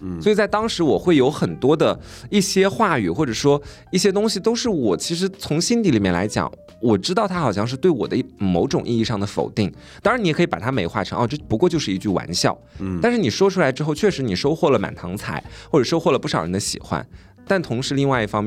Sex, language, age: male, Chinese, 20-39